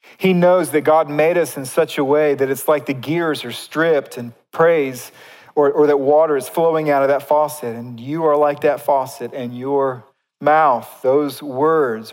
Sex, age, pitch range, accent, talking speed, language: male, 40-59, 140-190 Hz, American, 200 wpm, English